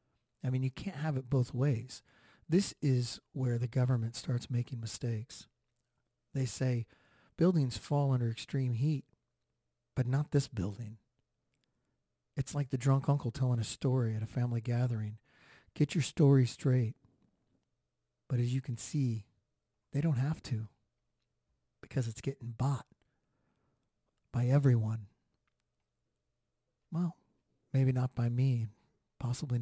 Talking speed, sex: 130 wpm, male